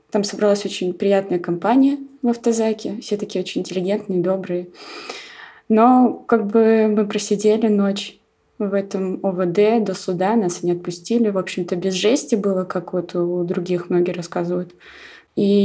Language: Russian